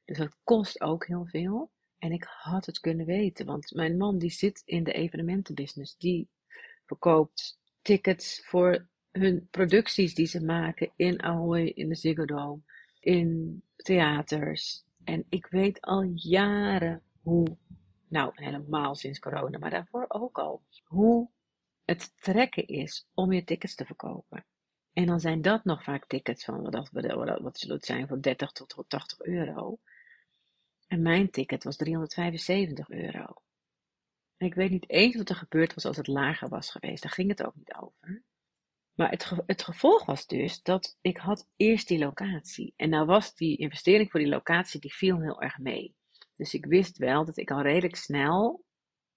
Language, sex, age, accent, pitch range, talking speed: Dutch, female, 40-59, Dutch, 155-190 Hz, 165 wpm